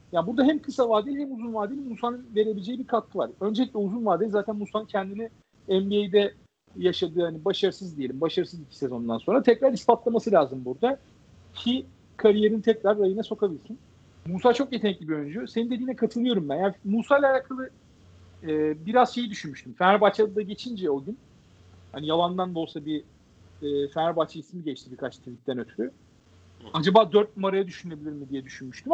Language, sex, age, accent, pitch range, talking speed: Turkish, male, 50-69, native, 145-220 Hz, 160 wpm